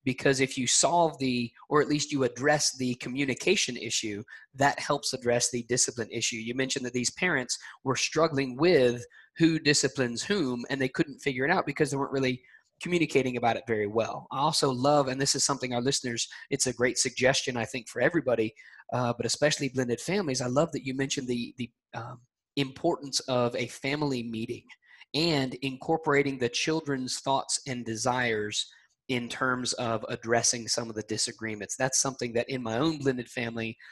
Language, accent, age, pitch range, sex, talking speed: English, American, 20-39, 115-135 Hz, male, 180 wpm